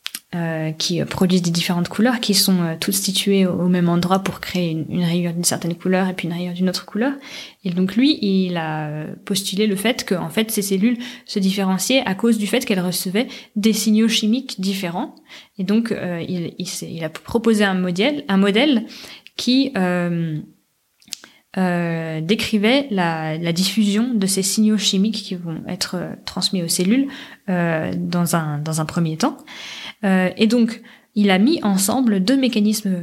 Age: 20-39